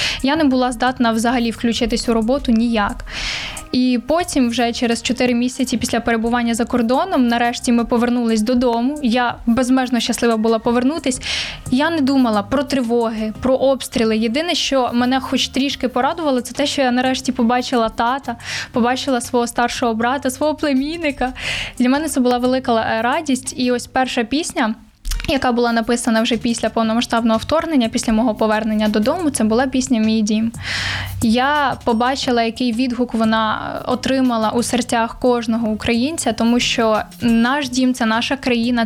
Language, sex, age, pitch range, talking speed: Ukrainian, female, 10-29, 230-260 Hz, 150 wpm